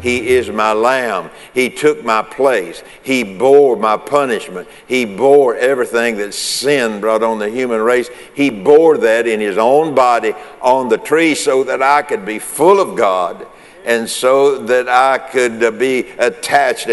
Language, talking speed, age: English, 165 wpm, 60-79